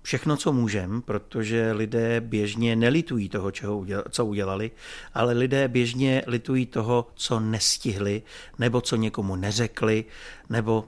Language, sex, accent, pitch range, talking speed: Czech, male, native, 105-125 Hz, 120 wpm